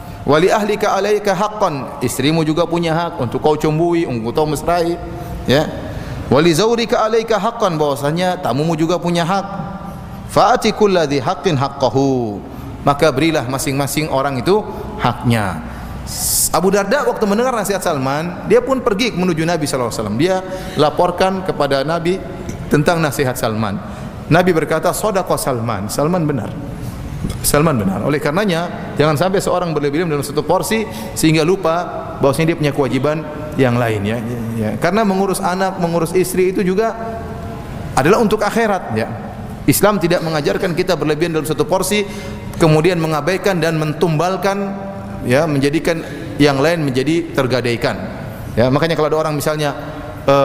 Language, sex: Indonesian, male